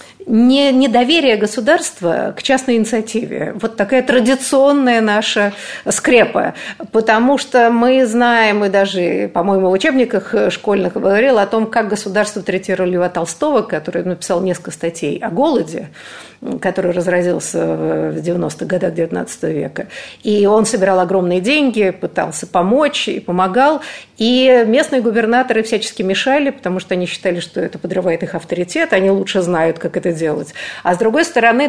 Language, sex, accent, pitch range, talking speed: Russian, female, native, 190-245 Hz, 140 wpm